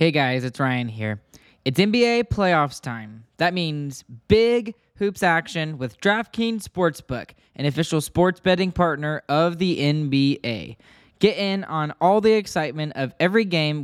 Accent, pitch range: American, 140-185 Hz